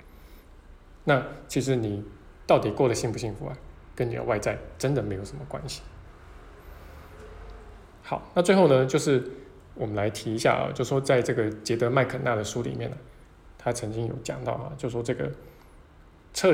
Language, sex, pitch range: Chinese, male, 90-130 Hz